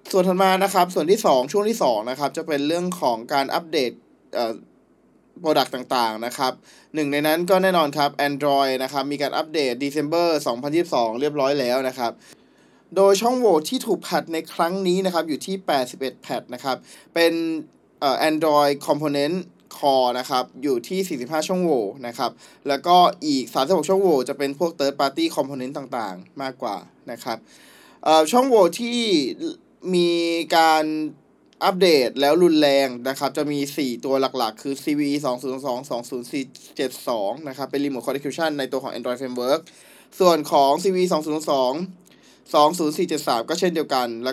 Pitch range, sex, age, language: 135-175 Hz, male, 20-39, Thai